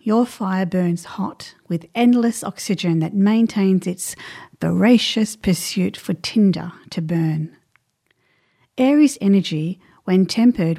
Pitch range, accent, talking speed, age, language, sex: 175-225 Hz, Australian, 110 wpm, 40-59, English, female